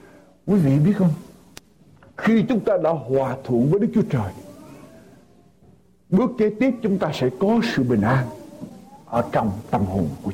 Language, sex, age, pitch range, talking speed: Vietnamese, male, 60-79, 175-260 Hz, 170 wpm